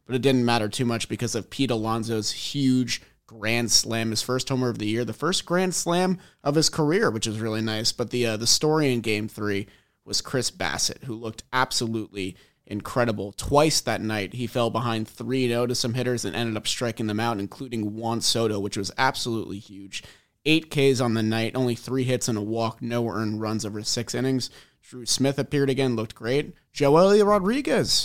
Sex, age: male, 30-49